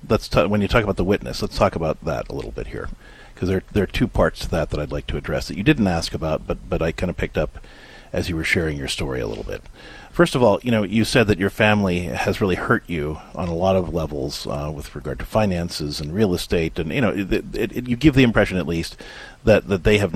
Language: English